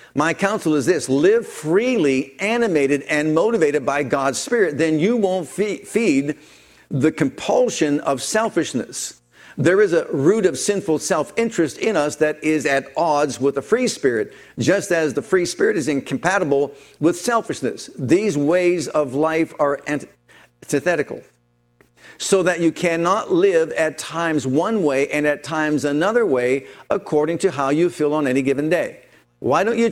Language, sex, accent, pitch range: English, male, American, 145-180 Hz